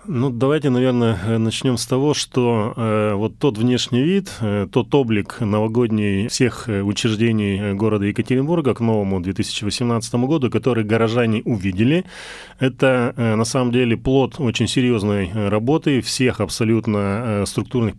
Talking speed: 120 wpm